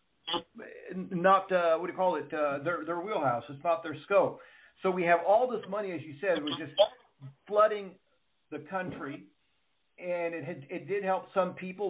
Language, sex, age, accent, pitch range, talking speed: English, male, 50-69, American, 150-185 Hz, 185 wpm